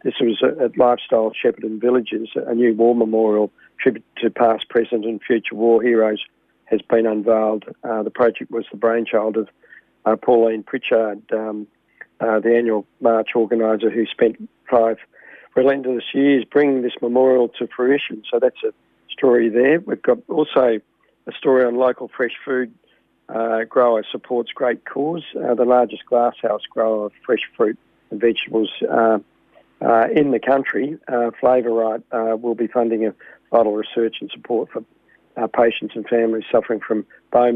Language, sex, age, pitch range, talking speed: English, male, 50-69, 110-125 Hz, 160 wpm